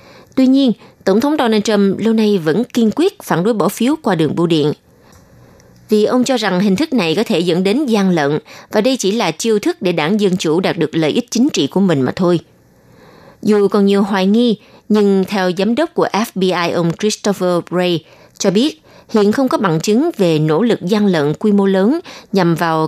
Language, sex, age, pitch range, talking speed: Vietnamese, female, 20-39, 170-225 Hz, 220 wpm